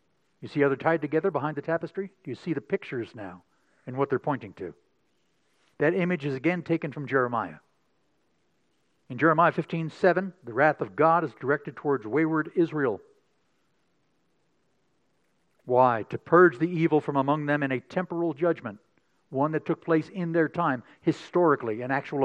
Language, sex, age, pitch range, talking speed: English, male, 60-79, 135-170 Hz, 165 wpm